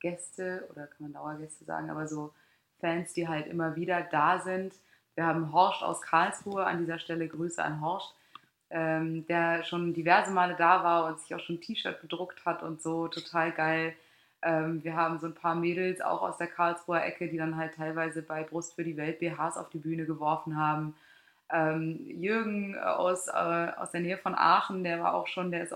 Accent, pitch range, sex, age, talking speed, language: German, 160-185 Hz, female, 20-39, 205 wpm, German